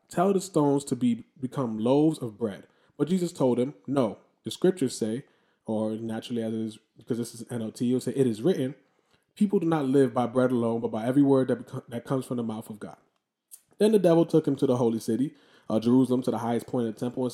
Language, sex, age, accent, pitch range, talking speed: English, male, 20-39, American, 115-150 Hz, 245 wpm